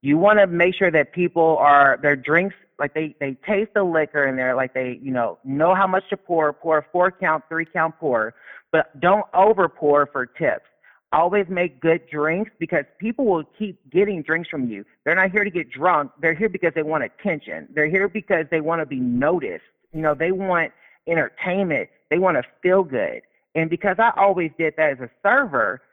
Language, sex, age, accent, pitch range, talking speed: English, male, 40-59, American, 150-195 Hz, 210 wpm